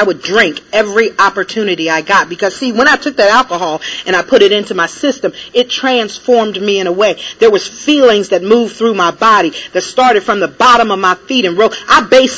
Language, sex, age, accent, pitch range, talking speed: English, female, 40-59, American, 195-255 Hz, 230 wpm